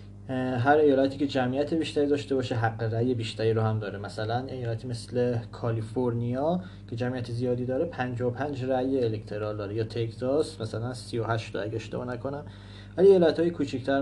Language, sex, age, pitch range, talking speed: Persian, male, 30-49, 110-140 Hz, 150 wpm